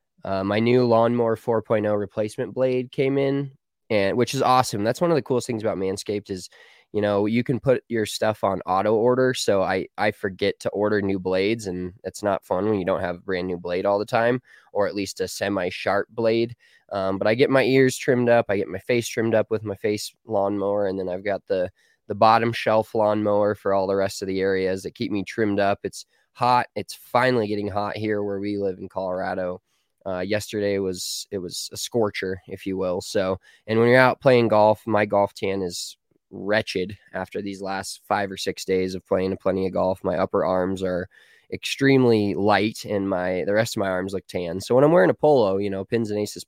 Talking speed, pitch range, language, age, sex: 220 wpm, 95-115 Hz, English, 20-39, male